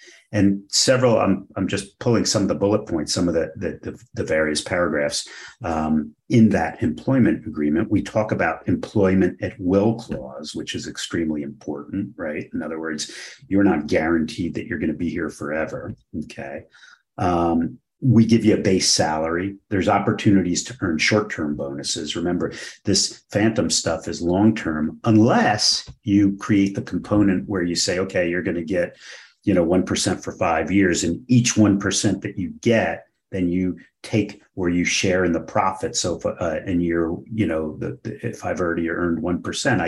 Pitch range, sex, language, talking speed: 80-105 Hz, male, English, 175 wpm